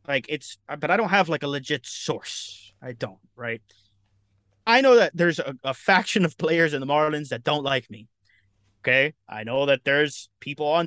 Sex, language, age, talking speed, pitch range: male, English, 30-49, 200 wpm, 120-180 Hz